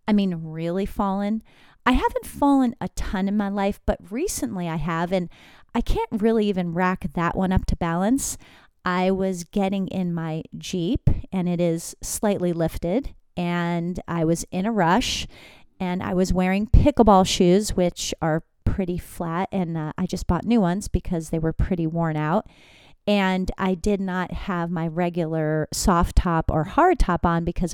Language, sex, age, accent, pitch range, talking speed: English, female, 30-49, American, 170-205 Hz, 175 wpm